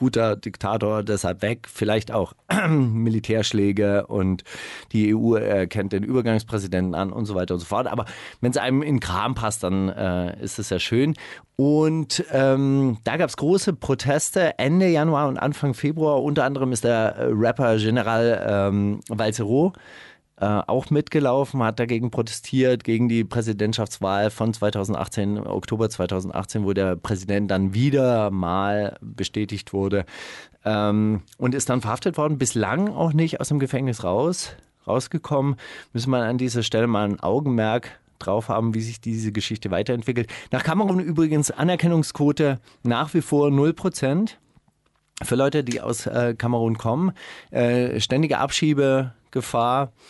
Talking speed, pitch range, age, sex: 145 wpm, 105-135 Hz, 30-49, male